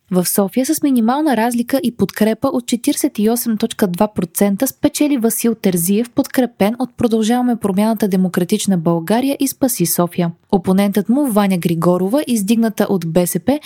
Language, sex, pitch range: Bulgarian, female, 185-255 Hz